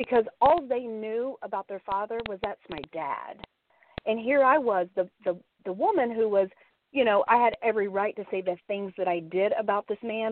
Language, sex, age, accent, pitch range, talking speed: English, female, 40-59, American, 195-240 Hz, 215 wpm